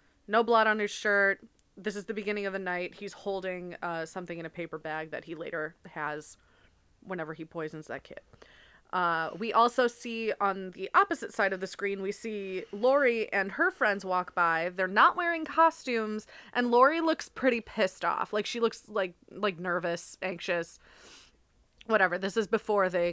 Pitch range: 175-235 Hz